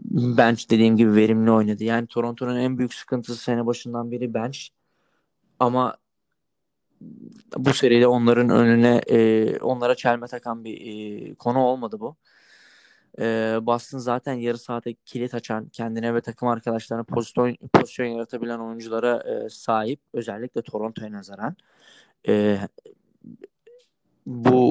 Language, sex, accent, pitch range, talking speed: Turkish, male, native, 110-120 Hz, 120 wpm